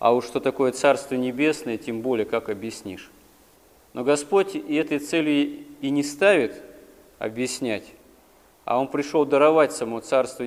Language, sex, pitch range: Russian, male, 125-165 Hz